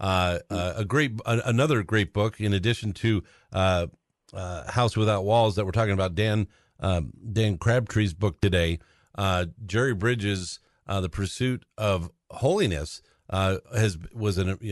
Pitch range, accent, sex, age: 95-125 Hz, American, male, 50-69